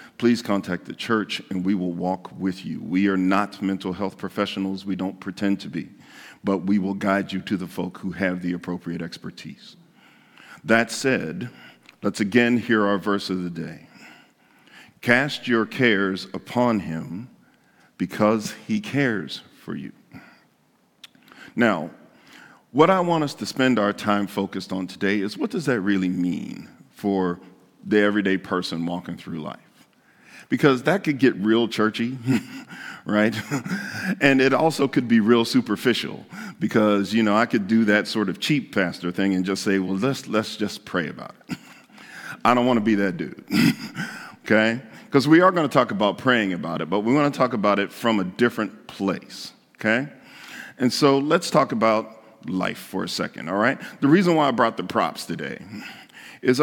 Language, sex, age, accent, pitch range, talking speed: English, male, 50-69, American, 95-125 Hz, 175 wpm